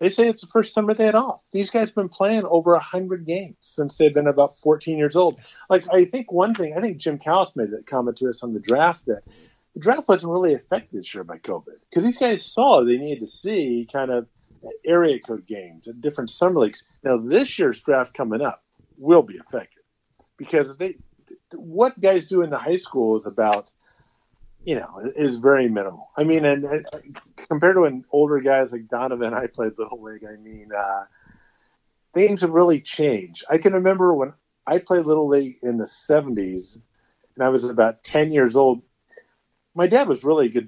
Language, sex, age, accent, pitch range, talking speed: English, male, 50-69, American, 120-180 Hz, 205 wpm